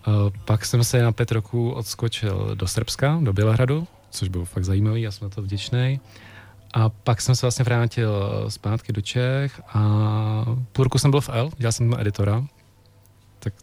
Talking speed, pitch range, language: 180 wpm, 105-120 Hz, Czech